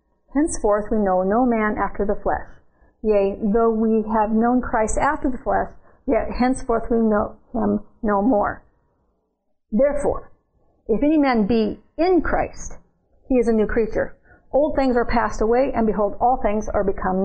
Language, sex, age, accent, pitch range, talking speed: English, female, 50-69, American, 220-275 Hz, 165 wpm